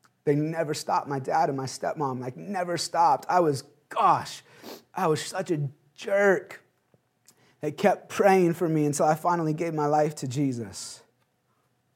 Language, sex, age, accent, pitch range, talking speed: English, male, 30-49, American, 135-185 Hz, 160 wpm